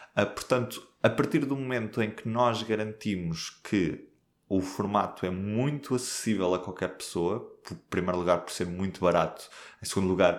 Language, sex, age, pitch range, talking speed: Portuguese, male, 20-39, 95-115 Hz, 160 wpm